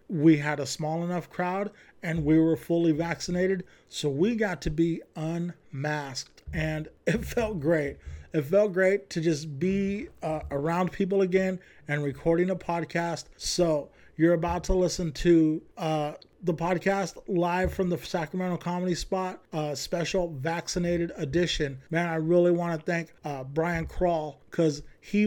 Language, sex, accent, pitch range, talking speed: English, male, American, 160-190 Hz, 155 wpm